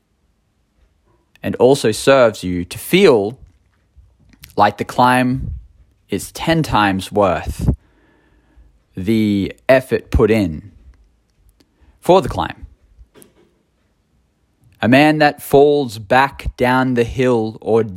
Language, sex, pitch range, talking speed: English, male, 95-125 Hz, 95 wpm